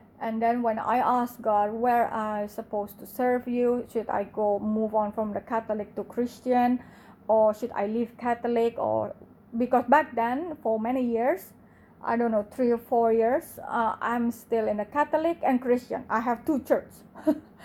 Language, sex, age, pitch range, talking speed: English, female, 30-49, 205-245 Hz, 180 wpm